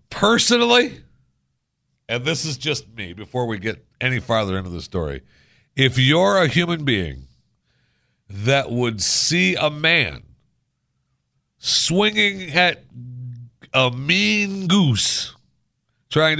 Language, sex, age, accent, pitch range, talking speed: English, male, 60-79, American, 95-160 Hz, 110 wpm